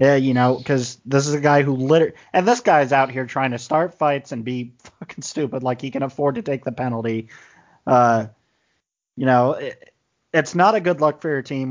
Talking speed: 220 wpm